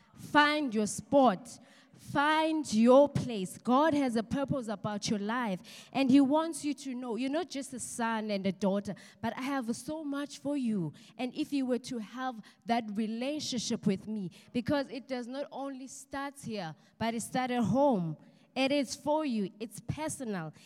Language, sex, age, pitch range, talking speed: English, female, 20-39, 210-255 Hz, 180 wpm